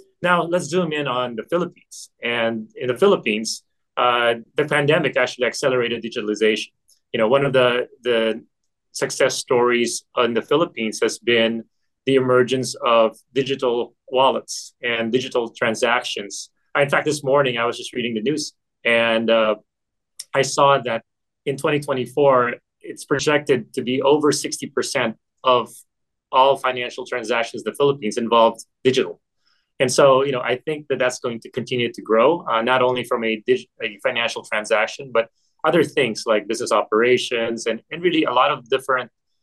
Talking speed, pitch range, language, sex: 160 wpm, 115-145 Hz, English, male